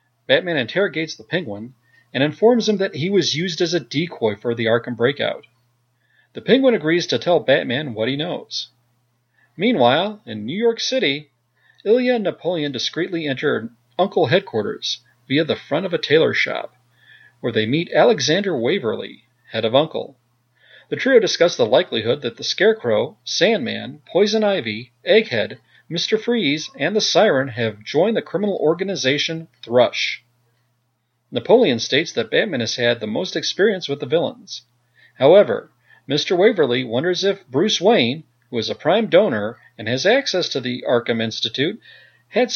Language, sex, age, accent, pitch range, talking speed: English, male, 40-59, American, 120-195 Hz, 155 wpm